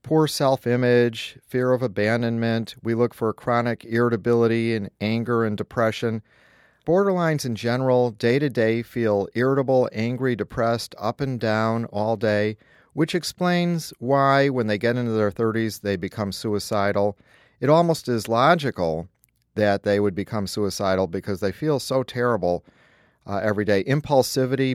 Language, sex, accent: English, male, American